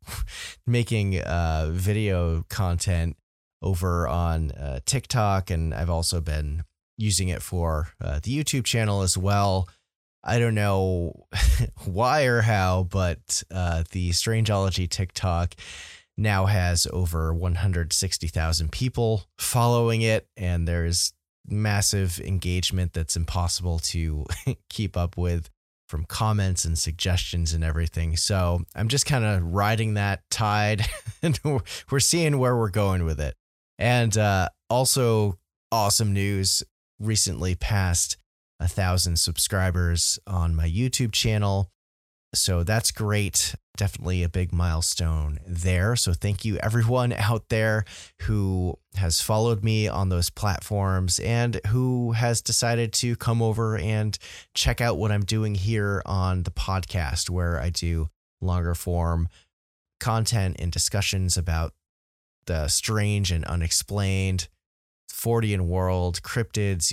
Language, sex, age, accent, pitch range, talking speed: English, male, 30-49, American, 85-105 Hz, 125 wpm